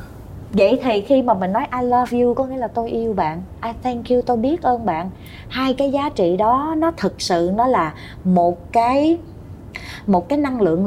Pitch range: 175-255 Hz